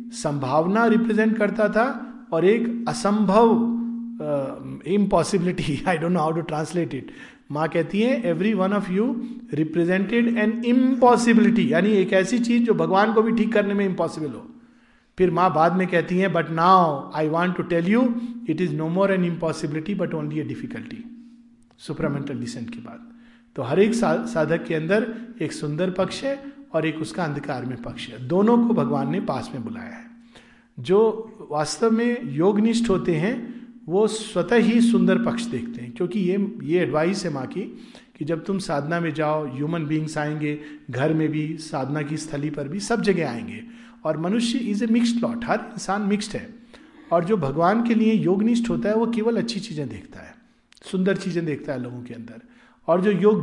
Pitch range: 160-235 Hz